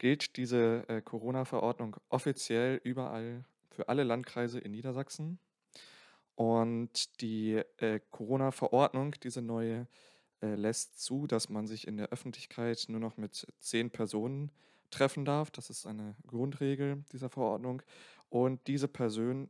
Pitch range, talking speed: 115-140 Hz, 130 wpm